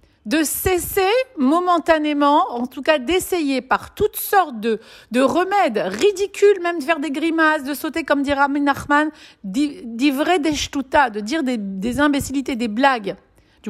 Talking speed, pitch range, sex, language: 150 wpm, 230-315 Hz, female, French